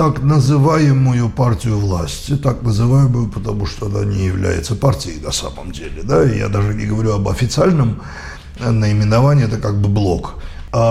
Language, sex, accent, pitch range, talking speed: Russian, male, native, 100-135 Hz, 150 wpm